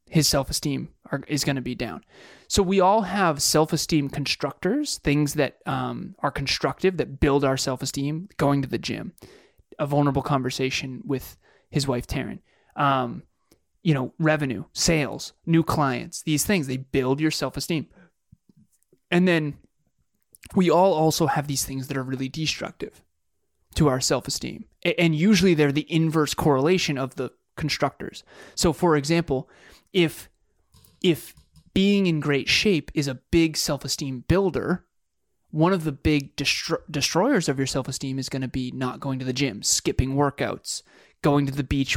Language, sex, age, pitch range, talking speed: English, male, 20-39, 135-165 Hz, 155 wpm